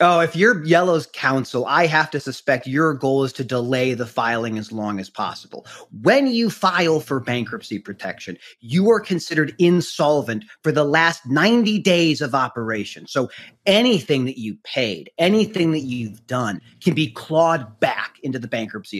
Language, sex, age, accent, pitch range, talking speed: English, male, 30-49, American, 130-170 Hz, 165 wpm